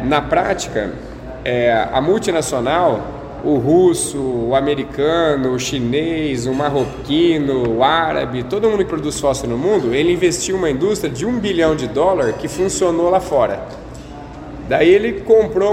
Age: 20-39